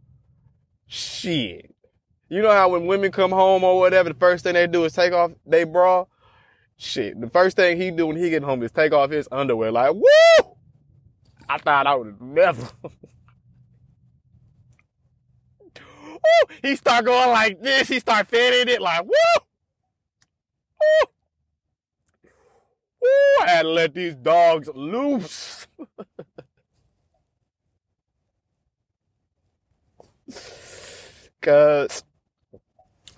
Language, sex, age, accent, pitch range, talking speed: English, male, 30-49, American, 135-220 Hz, 115 wpm